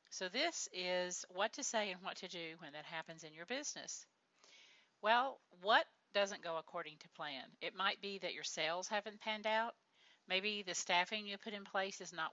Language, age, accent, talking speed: English, 50-69, American, 200 wpm